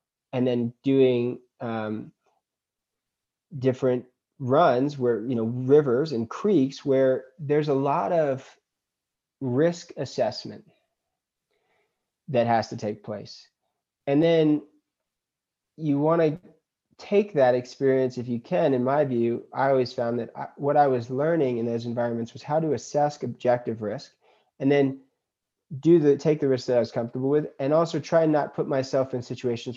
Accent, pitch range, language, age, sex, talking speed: American, 125-145 Hz, English, 30-49, male, 155 wpm